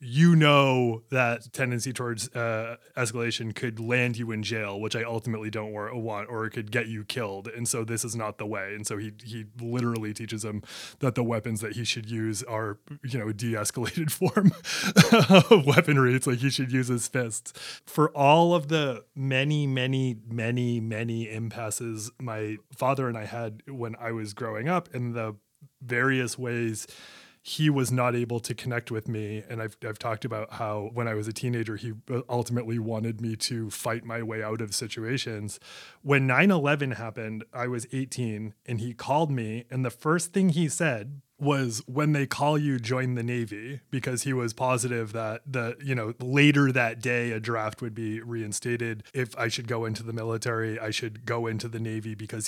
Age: 20-39